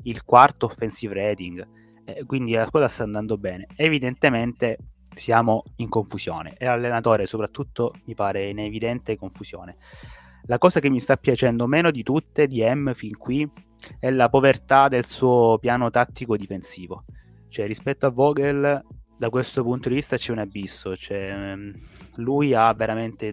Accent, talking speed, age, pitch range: native, 150 wpm, 20-39, 105-130 Hz